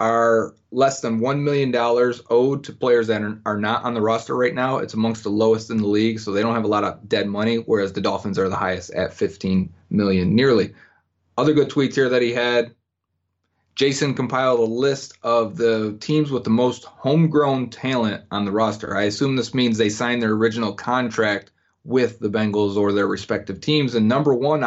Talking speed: 200 wpm